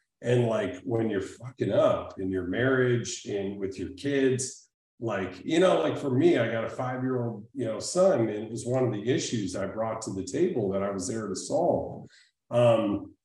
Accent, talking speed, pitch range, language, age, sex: American, 205 wpm, 100-125 Hz, English, 40-59, male